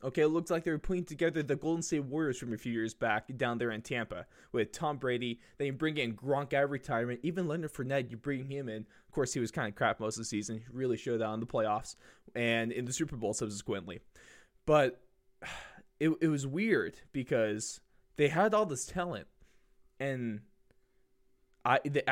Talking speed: 200 wpm